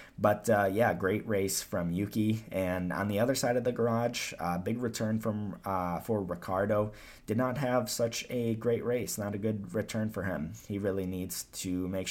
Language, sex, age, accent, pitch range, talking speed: English, male, 20-39, American, 85-105 Hz, 200 wpm